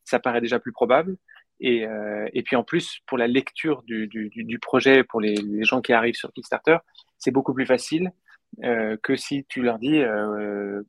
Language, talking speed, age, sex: French, 205 wpm, 20-39, male